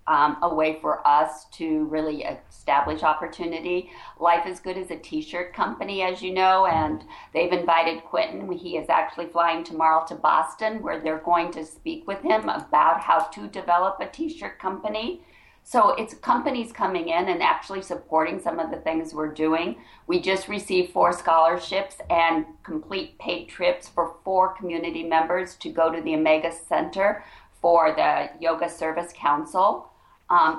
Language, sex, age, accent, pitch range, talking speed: English, female, 50-69, American, 160-185 Hz, 165 wpm